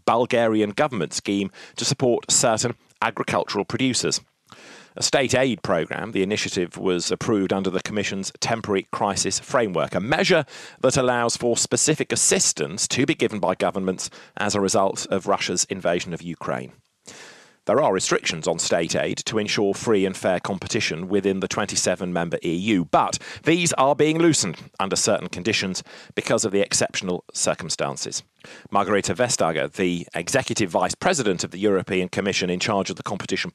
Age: 40-59